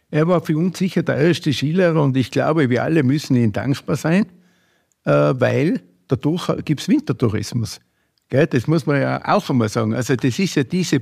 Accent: Austrian